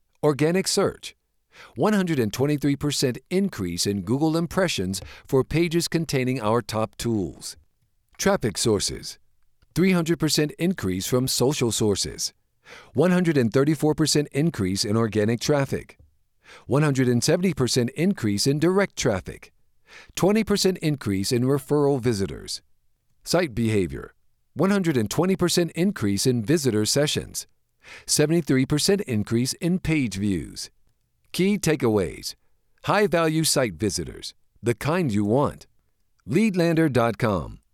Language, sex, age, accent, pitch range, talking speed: English, male, 50-69, American, 110-165 Hz, 90 wpm